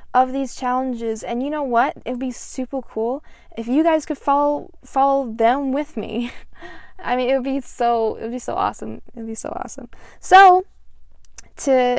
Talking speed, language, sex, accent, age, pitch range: 185 wpm, English, female, American, 20-39, 215-260 Hz